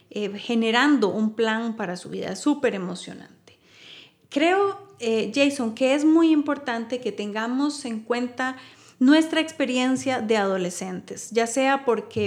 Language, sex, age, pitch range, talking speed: Spanish, female, 30-49, 215-255 Hz, 130 wpm